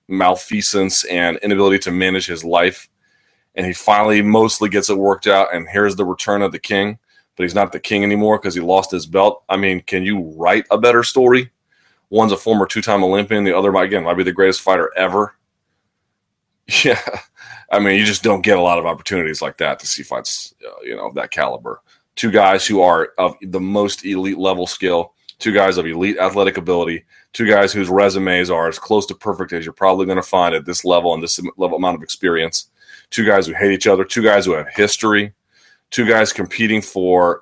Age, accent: 30-49, American